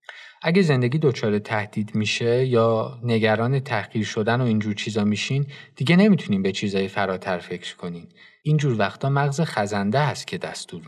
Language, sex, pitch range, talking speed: Persian, male, 105-135 Hz, 150 wpm